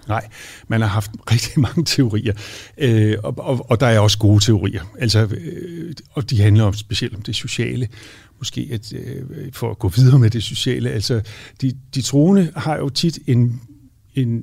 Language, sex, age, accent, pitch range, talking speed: Danish, male, 60-79, native, 110-135 Hz, 185 wpm